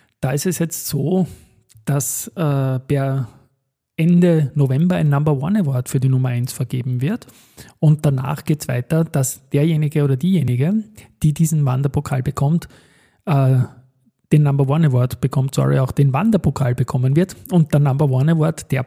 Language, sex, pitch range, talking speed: German, male, 135-160 Hz, 160 wpm